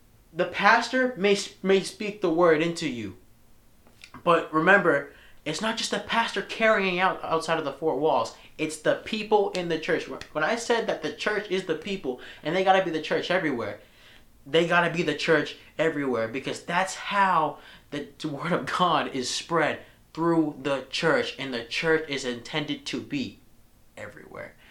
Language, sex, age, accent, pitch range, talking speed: English, male, 20-39, American, 135-195 Hz, 175 wpm